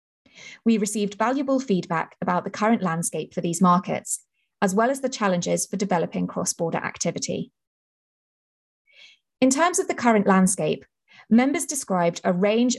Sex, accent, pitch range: female, British, 185-245 Hz